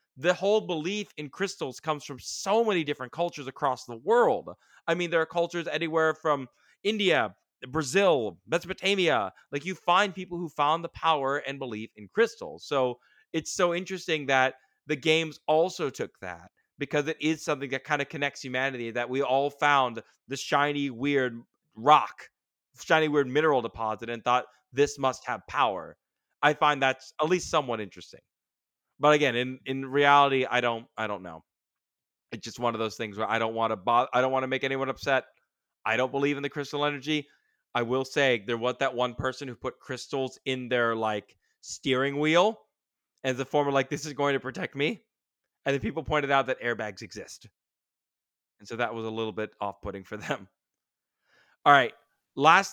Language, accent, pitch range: English, American, 125-155 Hz